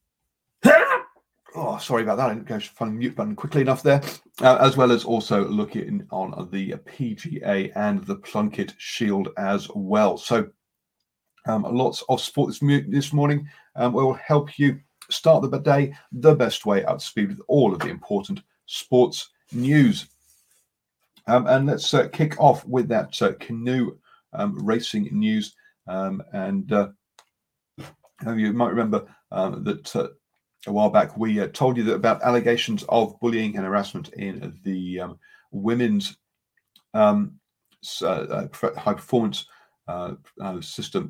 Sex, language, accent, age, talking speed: male, English, British, 40-59, 150 wpm